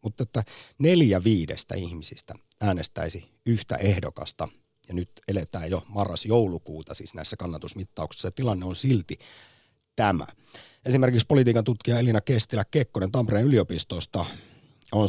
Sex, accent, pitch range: male, native, 90-125 Hz